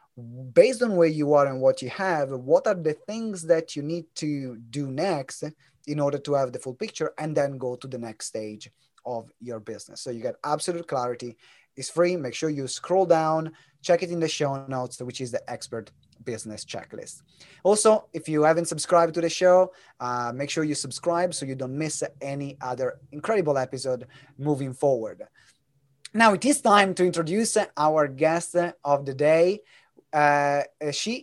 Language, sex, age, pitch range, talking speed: English, male, 30-49, 135-180 Hz, 185 wpm